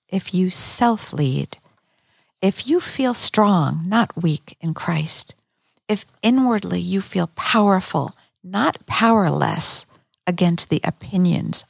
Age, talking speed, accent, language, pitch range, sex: 50-69, 115 wpm, American, English, 160-205 Hz, female